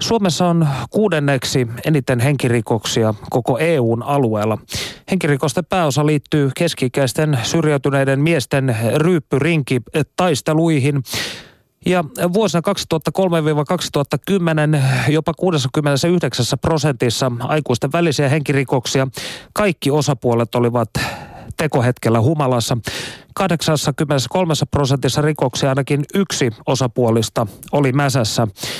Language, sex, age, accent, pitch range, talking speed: Finnish, male, 30-49, native, 130-160 Hz, 75 wpm